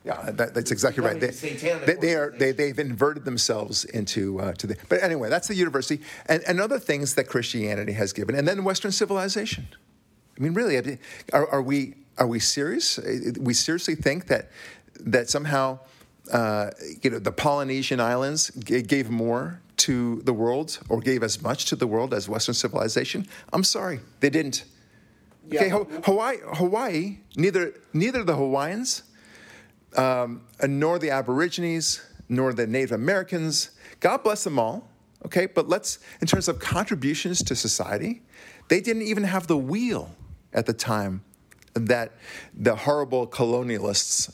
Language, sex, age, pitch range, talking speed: English, male, 40-59, 115-165 Hz, 155 wpm